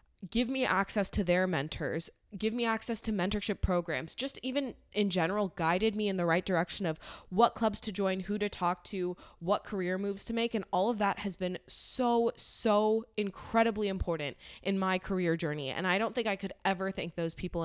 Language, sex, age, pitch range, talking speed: English, female, 20-39, 170-210 Hz, 205 wpm